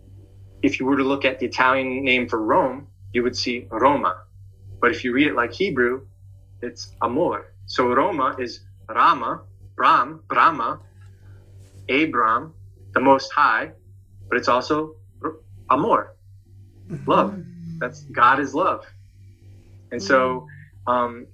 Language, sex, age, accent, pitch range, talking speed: English, male, 20-39, American, 95-130 Hz, 130 wpm